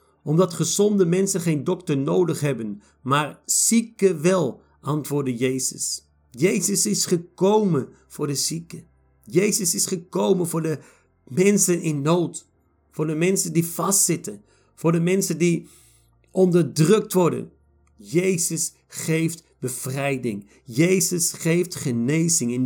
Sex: male